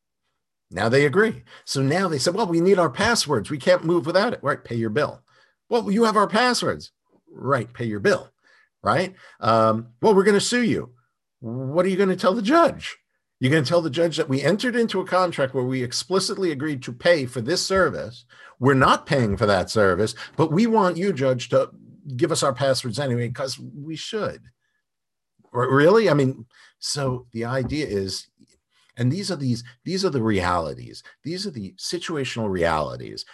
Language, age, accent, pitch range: English, 50-69, American, 115-175 Hz